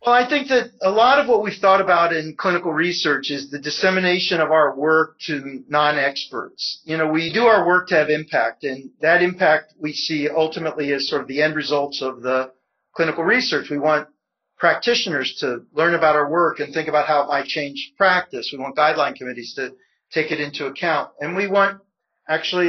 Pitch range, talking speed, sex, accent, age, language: 150-180 Hz, 200 wpm, male, American, 40-59, English